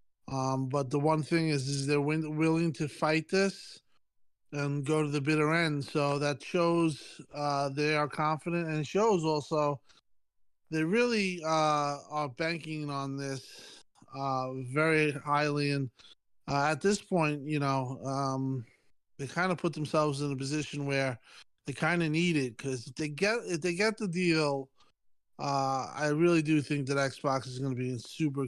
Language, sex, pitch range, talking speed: English, male, 140-160 Hz, 175 wpm